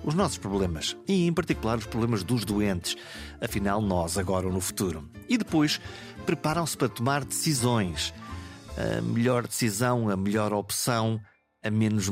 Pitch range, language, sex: 100-135 Hz, Portuguese, male